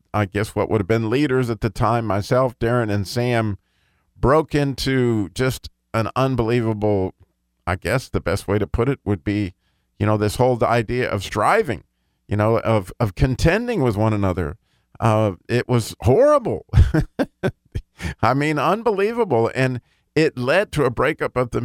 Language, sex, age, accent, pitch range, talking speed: English, male, 50-69, American, 110-145 Hz, 165 wpm